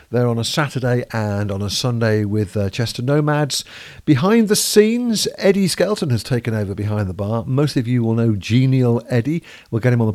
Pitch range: 110-150 Hz